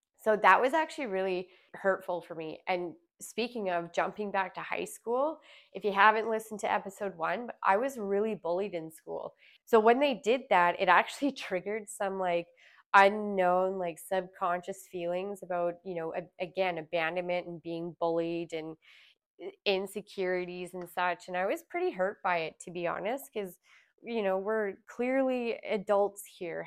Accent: American